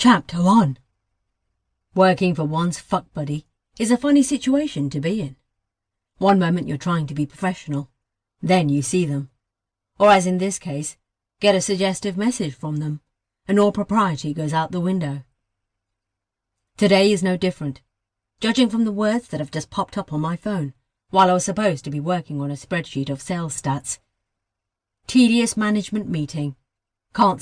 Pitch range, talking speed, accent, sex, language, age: 130-190 Hz, 165 wpm, British, female, English, 40-59